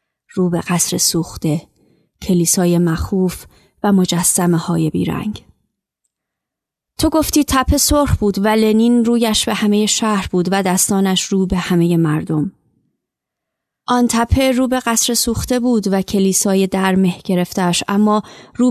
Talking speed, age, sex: 130 wpm, 30-49, female